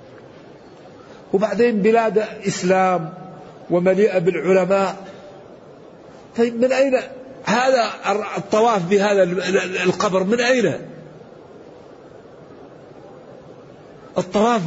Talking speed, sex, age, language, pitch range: 60 wpm, male, 50-69, Arabic, 185-220 Hz